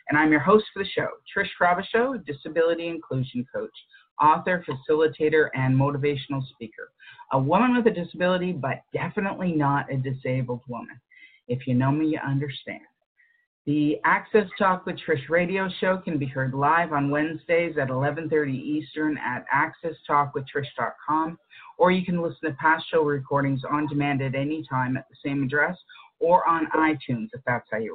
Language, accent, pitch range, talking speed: English, American, 140-180 Hz, 165 wpm